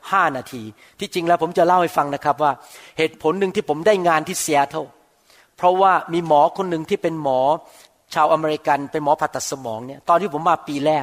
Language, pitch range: Thai, 140-175 Hz